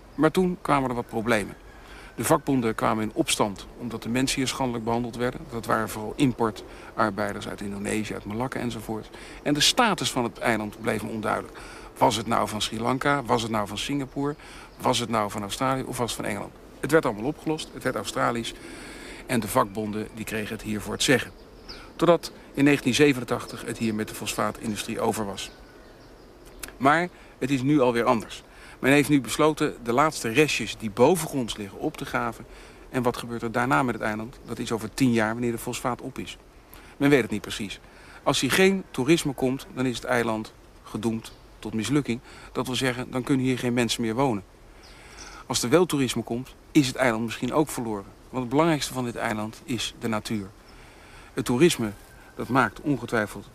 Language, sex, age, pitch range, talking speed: Dutch, male, 60-79, 110-135 Hz, 190 wpm